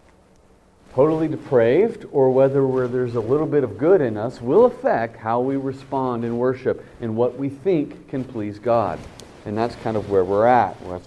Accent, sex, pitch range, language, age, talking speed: American, male, 110-155 Hz, English, 40-59, 185 wpm